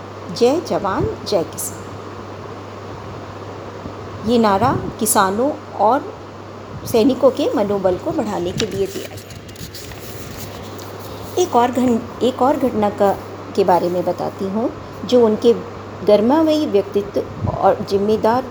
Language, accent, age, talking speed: Hindi, native, 50-69, 105 wpm